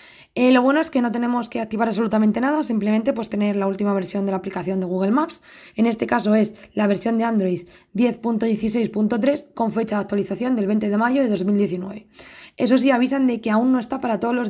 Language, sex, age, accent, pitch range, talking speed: Spanish, female, 20-39, Spanish, 190-230 Hz, 220 wpm